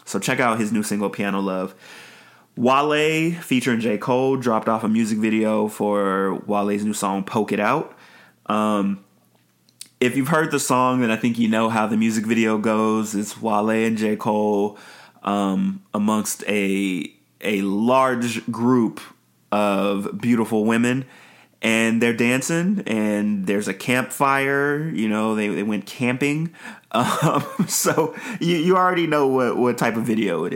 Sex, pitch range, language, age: male, 105-125 Hz, English, 20-39